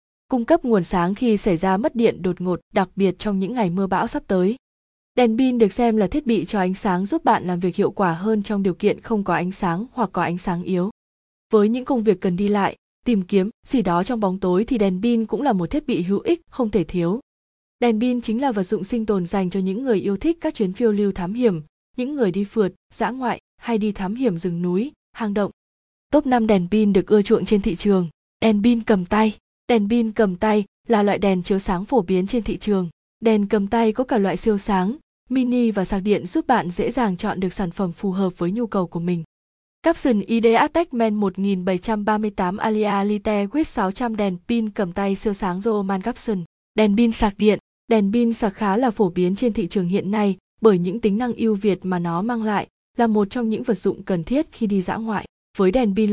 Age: 20-39